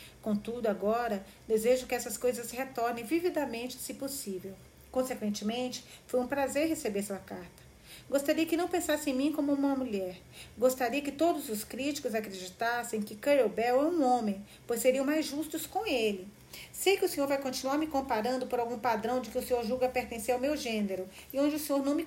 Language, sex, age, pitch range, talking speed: Portuguese, female, 40-59, 220-270 Hz, 190 wpm